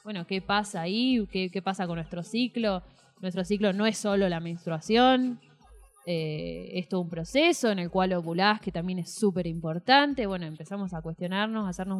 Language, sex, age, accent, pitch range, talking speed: Spanish, female, 20-39, Argentinian, 180-225 Hz, 185 wpm